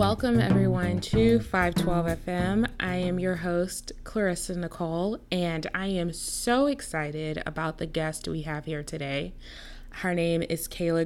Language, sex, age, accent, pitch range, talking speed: English, female, 20-39, American, 155-190 Hz, 145 wpm